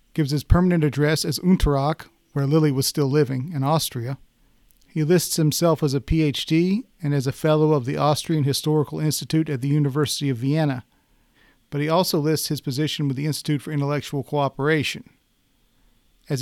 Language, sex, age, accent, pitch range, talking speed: English, male, 40-59, American, 140-160 Hz, 170 wpm